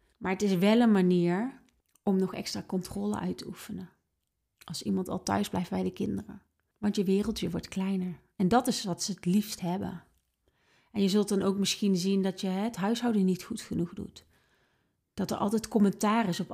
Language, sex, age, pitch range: Dutch, female, 30-49, 190-215 Hz